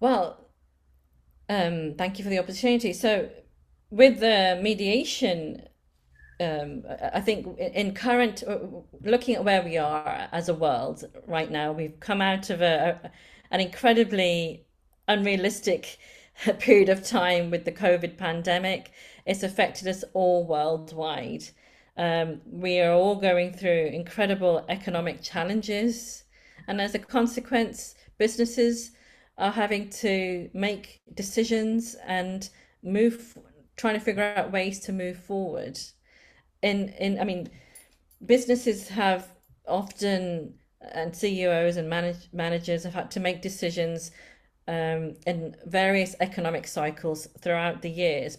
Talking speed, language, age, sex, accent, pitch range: 125 wpm, English, 40-59, female, British, 165-205 Hz